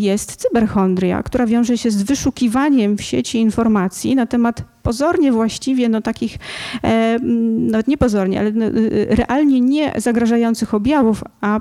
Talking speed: 130 wpm